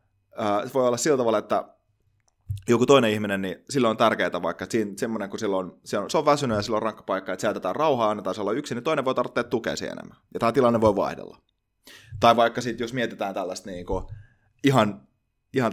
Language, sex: Finnish, male